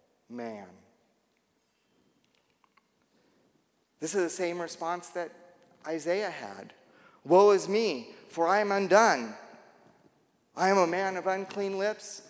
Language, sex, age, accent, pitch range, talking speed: English, male, 40-59, American, 120-175 Hz, 110 wpm